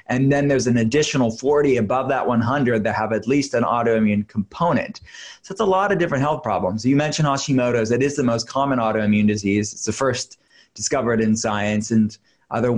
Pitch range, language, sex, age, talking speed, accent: 110-140 Hz, English, male, 20-39, 195 wpm, American